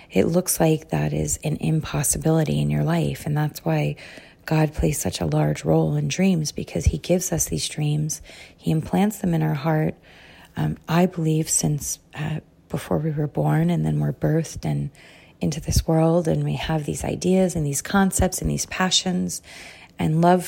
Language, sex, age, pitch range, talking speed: English, female, 30-49, 150-175 Hz, 180 wpm